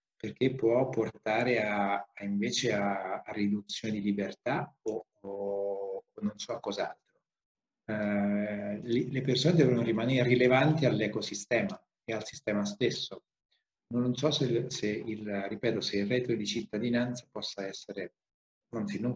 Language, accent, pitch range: Italian, native, 105-125 Hz